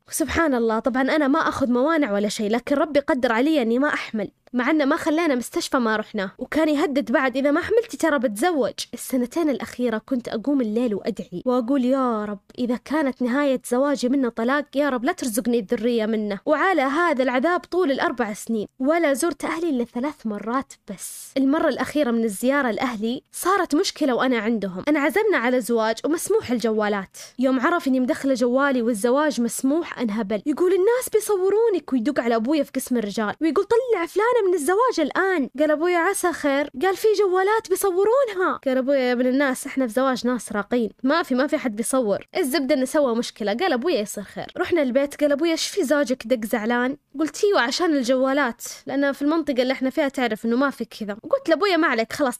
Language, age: Arabic, 20-39